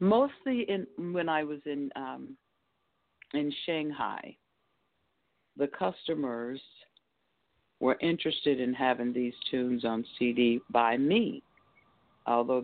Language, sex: English, female